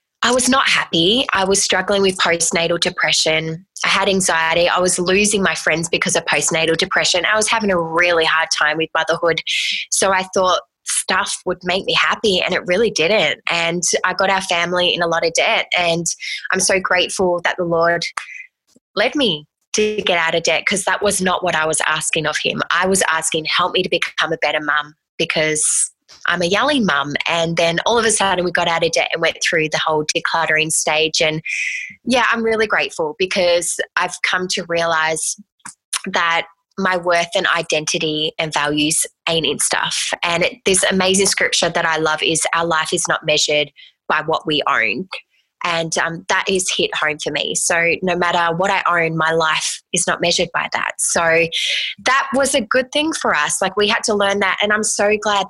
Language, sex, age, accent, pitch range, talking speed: English, female, 20-39, Australian, 160-195 Hz, 200 wpm